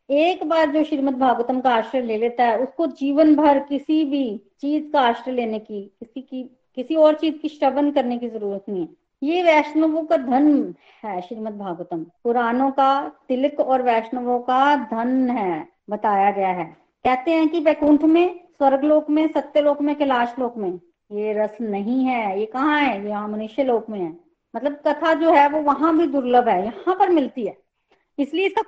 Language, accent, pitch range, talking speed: Hindi, native, 240-310 Hz, 190 wpm